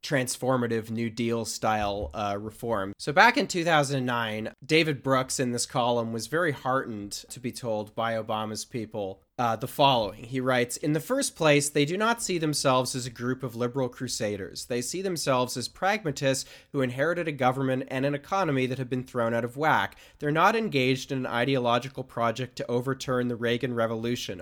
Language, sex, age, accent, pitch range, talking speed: English, male, 30-49, American, 125-155 Hz, 185 wpm